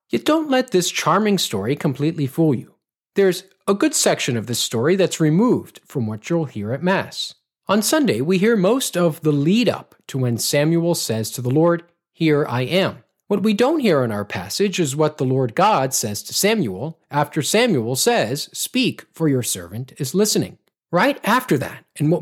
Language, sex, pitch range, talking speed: English, male, 140-200 Hz, 190 wpm